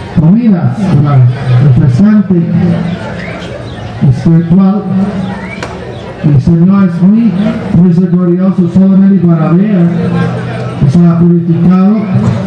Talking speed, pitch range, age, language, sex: 95 wpm, 165-190 Hz, 50-69, English, male